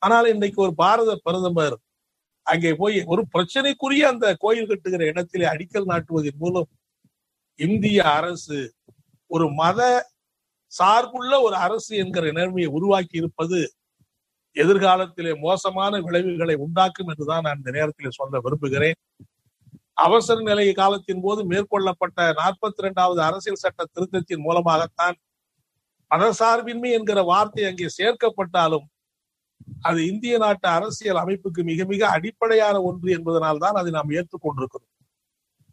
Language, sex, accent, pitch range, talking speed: Tamil, male, native, 165-215 Hz, 105 wpm